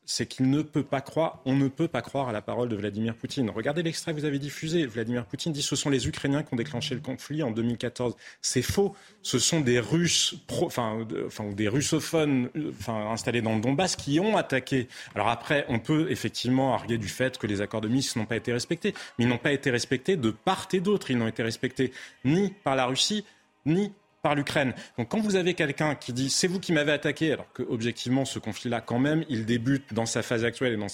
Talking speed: 235 wpm